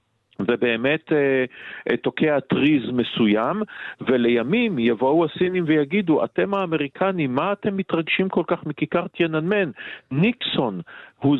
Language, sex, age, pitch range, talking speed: Hebrew, male, 50-69, 120-165 Hz, 110 wpm